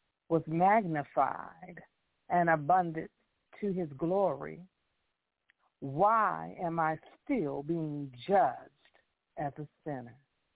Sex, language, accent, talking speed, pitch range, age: female, English, American, 90 wpm, 140-180 Hz, 50-69